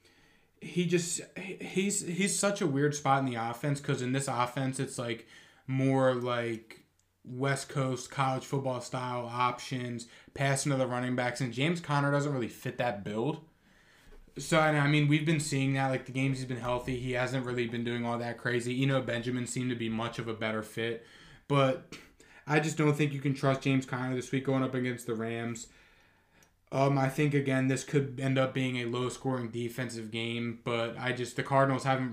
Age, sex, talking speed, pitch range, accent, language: 20-39, male, 200 wpm, 115-135 Hz, American, English